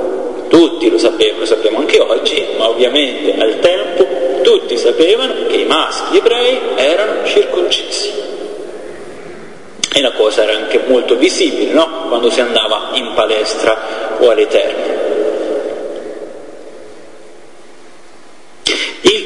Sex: male